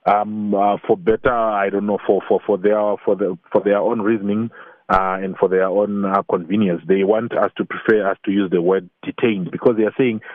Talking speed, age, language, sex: 225 wpm, 30-49, English, male